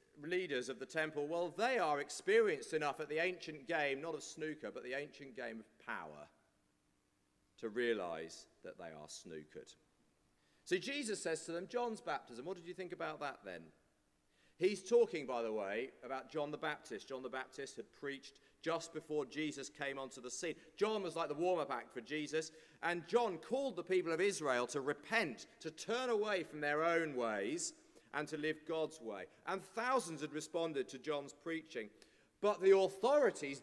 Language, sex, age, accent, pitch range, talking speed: English, male, 40-59, British, 135-180 Hz, 180 wpm